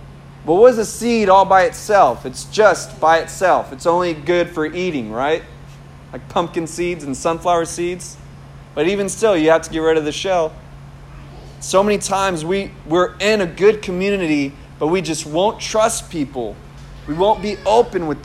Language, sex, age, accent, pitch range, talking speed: English, male, 30-49, American, 170-220 Hz, 180 wpm